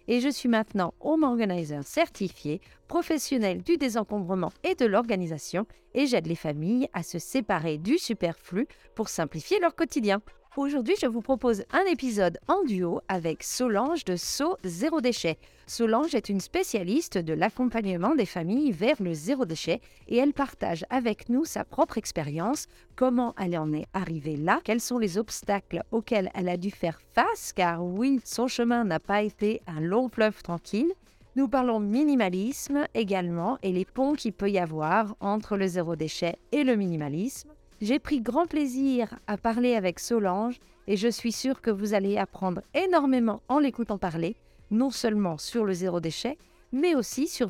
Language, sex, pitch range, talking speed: French, female, 180-265 Hz, 170 wpm